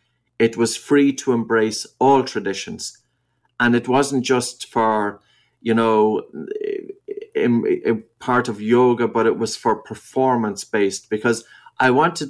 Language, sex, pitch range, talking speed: English, male, 110-130 Hz, 125 wpm